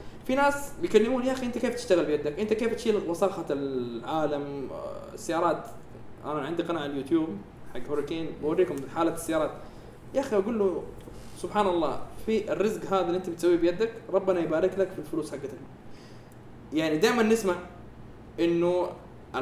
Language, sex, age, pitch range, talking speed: Arabic, male, 20-39, 150-200 Hz, 150 wpm